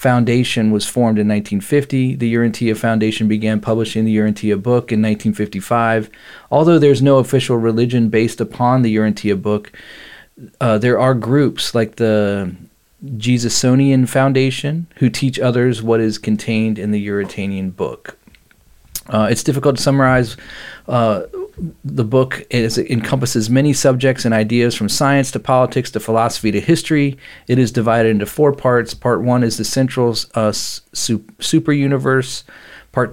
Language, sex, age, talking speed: English, male, 40-59, 145 wpm